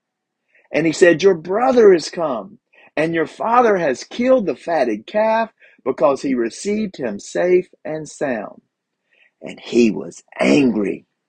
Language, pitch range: English, 140-220 Hz